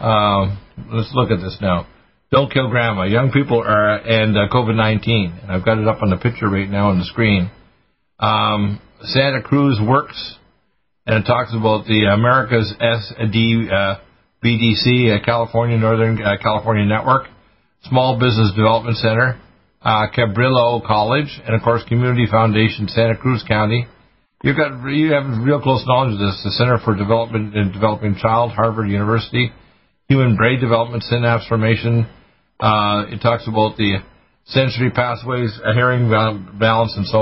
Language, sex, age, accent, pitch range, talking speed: English, male, 50-69, American, 105-120 Hz, 160 wpm